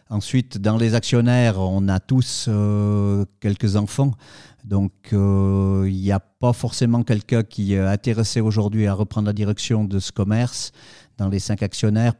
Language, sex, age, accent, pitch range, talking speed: French, male, 50-69, French, 100-115 Hz, 155 wpm